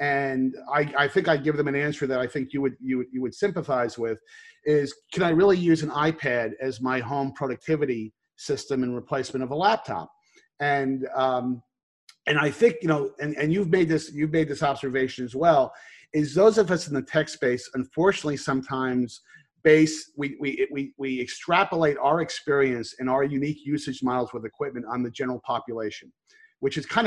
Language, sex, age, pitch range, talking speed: English, male, 40-59, 125-160 Hz, 190 wpm